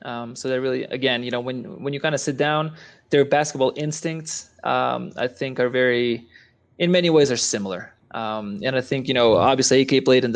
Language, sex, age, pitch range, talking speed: English, male, 20-39, 120-150 Hz, 210 wpm